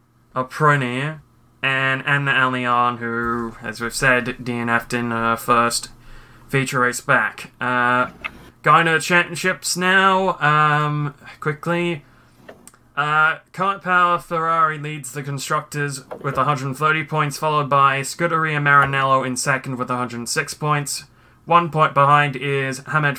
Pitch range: 130-155 Hz